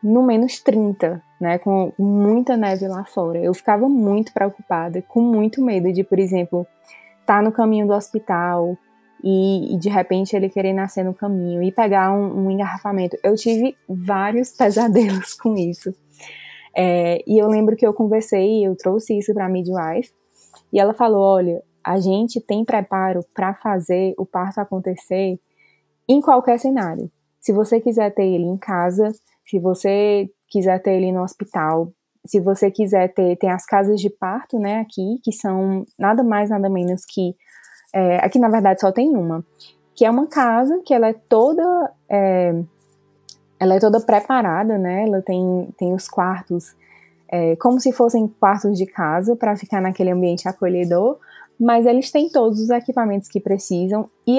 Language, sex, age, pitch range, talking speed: Portuguese, female, 20-39, 185-225 Hz, 160 wpm